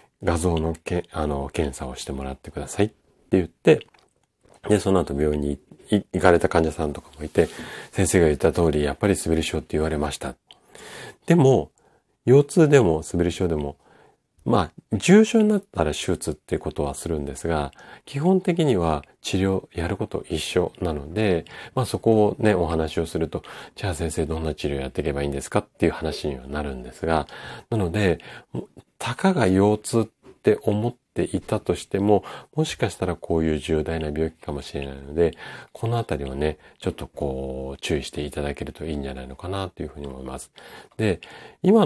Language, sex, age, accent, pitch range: Japanese, male, 40-59, native, 75-105 Hz